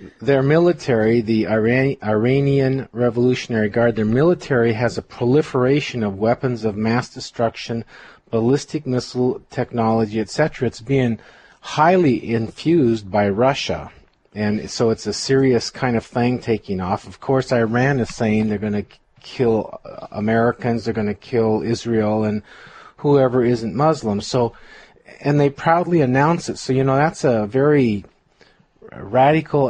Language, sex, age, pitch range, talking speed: English, male, 40-59, 115-140 Hz, 140 wpm